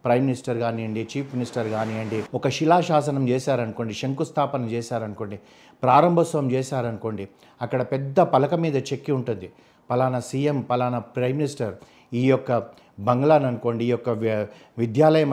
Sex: male